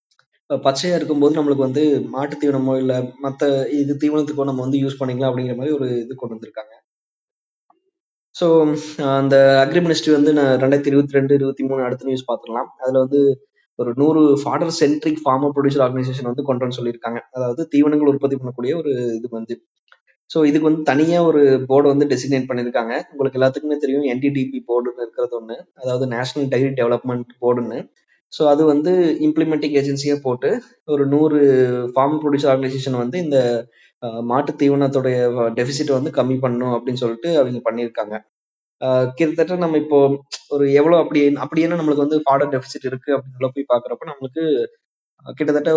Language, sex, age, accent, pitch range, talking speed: Tamil, male, 20-39, native, 130-150 Hz, 150 wpm